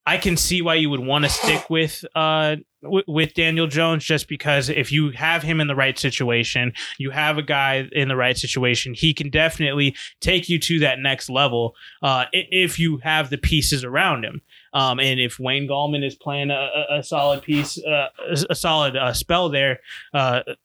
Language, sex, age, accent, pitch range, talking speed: English, male, 20-39, American, 135-160 Hz, 195 wpm